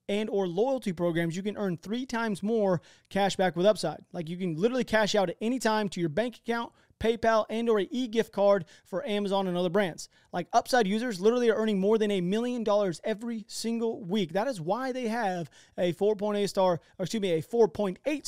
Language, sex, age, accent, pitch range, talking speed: English, male, 30-49, American, 180-225 Hz, 230 wpm